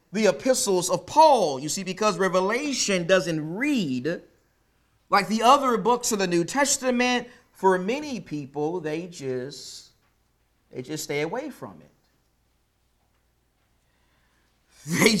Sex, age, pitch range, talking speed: male, 40-59, 160-230 Hz, 120 wpm